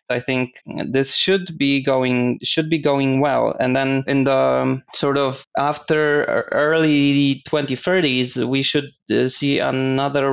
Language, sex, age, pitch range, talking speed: English, male, 20-39, 125-140 Hz, 145 wpm